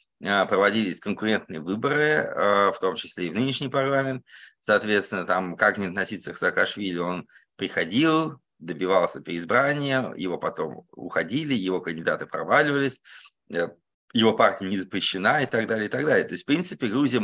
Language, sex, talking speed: Russian, male, 145 wpm